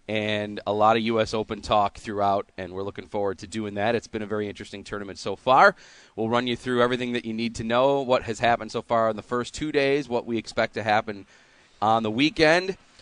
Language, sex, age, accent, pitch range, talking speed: English, male, 30-49, American, 105-130 Hz, 235 wpm